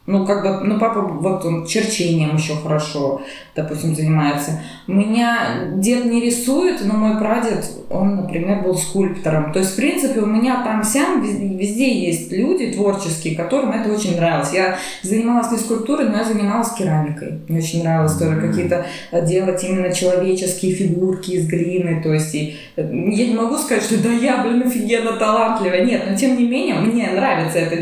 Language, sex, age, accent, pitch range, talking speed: Russian, female, 20-39, native, 170-220 Hz, 170 wpm